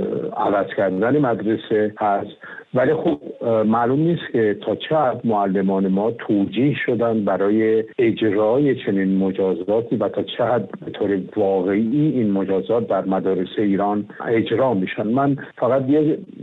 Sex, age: male, 60-79